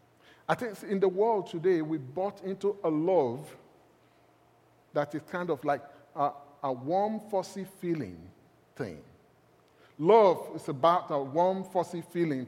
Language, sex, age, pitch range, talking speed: English, male, 30-49, 155-230 Hz, 140 wpm